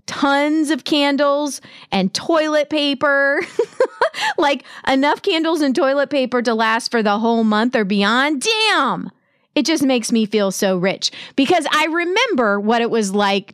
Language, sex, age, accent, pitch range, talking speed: English, female, 30-49, American, 210-285 Hz, 155 wpm